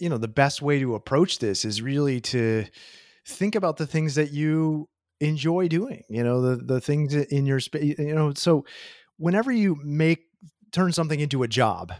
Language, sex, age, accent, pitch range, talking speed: English, male, 30-49, American, 125-160 Hz, 190 wpm